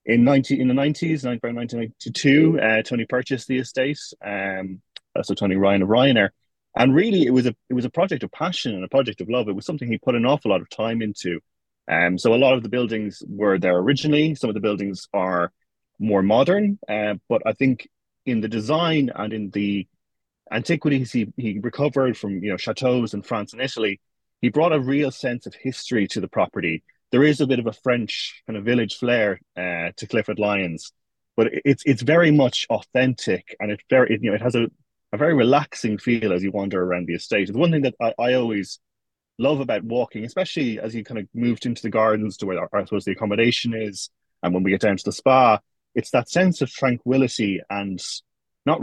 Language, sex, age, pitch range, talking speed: English, male, 30-49, 105-130 Hz, 215 wpm